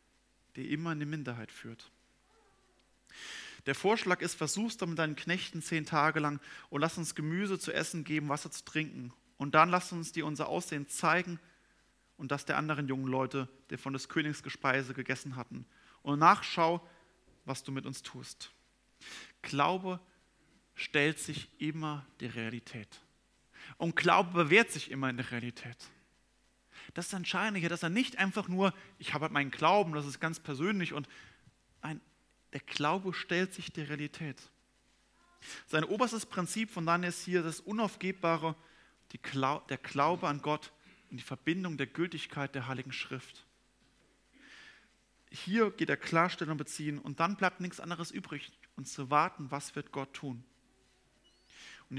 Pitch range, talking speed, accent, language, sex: 135-175 Hz, 155 wpm, German, German, male